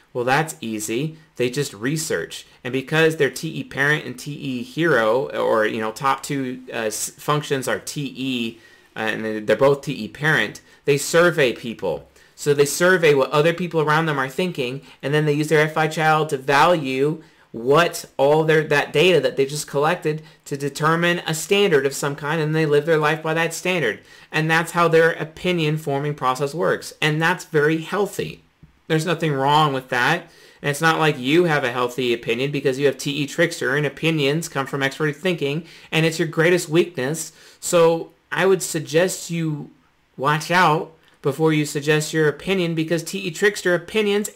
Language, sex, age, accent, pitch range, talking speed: English, male, 40-59, American, 145-180 Hz, 180 wpm